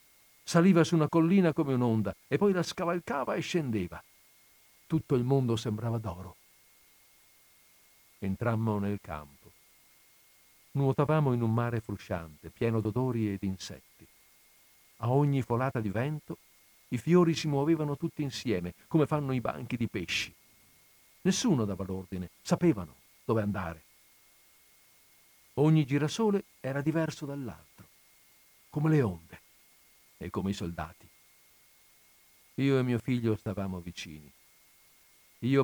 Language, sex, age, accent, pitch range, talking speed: Italian, male, 50-69, native, 95-140 Hz, 120 wpm